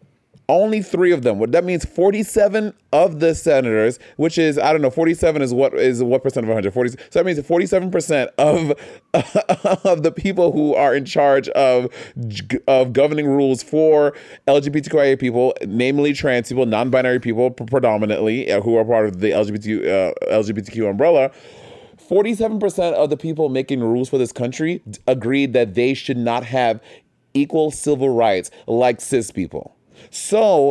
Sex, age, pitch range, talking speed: male, 30-49, 130-170 Hz, 155 wpm